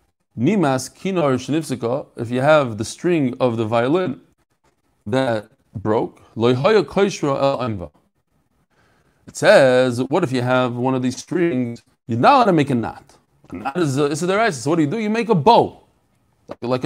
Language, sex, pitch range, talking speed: English, male, 140-180 Hz, 165 wpm